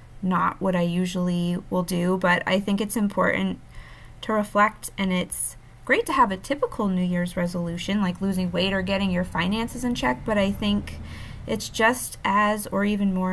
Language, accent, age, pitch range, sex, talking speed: English, American, 20-39, 180-215 Hz, female, 185 wpm